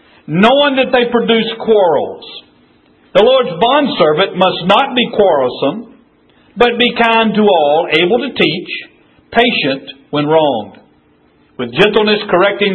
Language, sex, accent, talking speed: English, male, American, 120 wpm